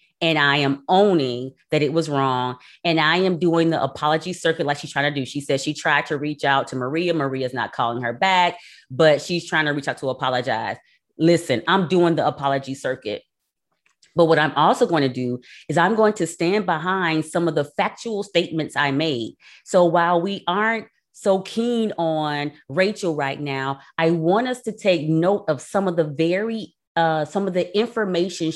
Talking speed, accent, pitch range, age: 200 wpm, American, 155-205 Hz, 30-49